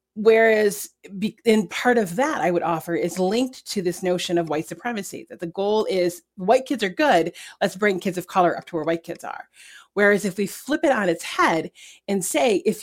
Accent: American